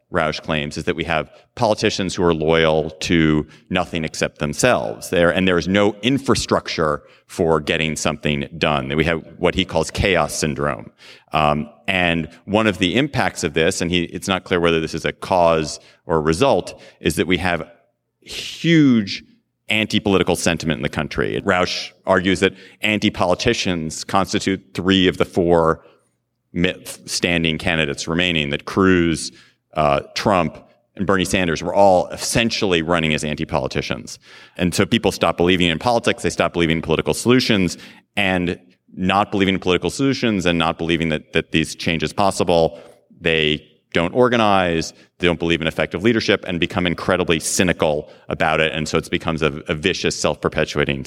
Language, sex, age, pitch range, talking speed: English, male, 30-49, 80-95 Hz, 165 wpm